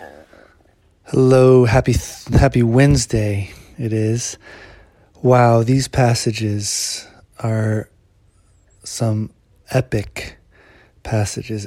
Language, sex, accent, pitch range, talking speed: English, male, American, 105-130 Hz, 65 wpm